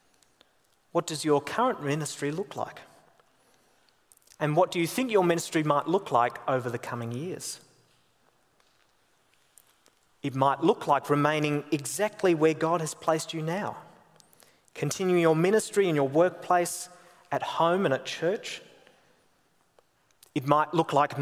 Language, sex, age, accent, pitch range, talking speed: English, male, 30-49, Australian, 130-165 Hz, 135 wpm